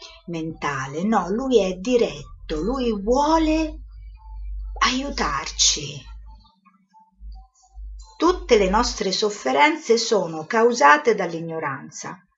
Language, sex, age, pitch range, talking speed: Italian, female, 50-69, 170-235 Hz, 75 wpm